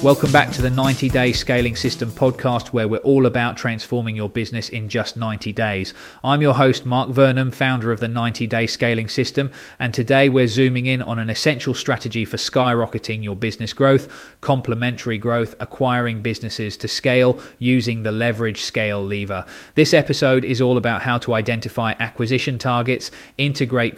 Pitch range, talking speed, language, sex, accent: 115-130 Hz, 170 wpm, English, male, British